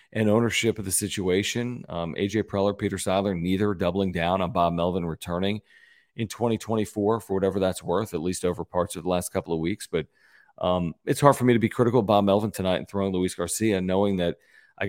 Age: 40-59